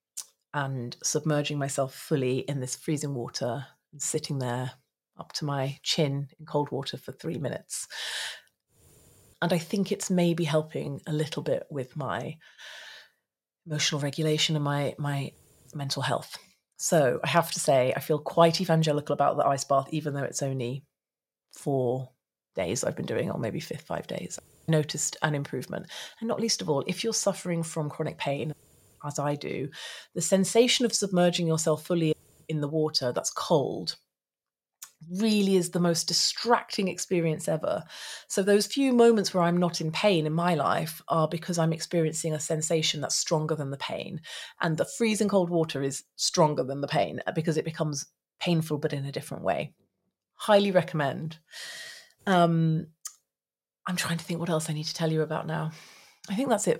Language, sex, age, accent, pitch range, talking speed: English, female, 30-49, British, 145-175 Hz, 175 wpm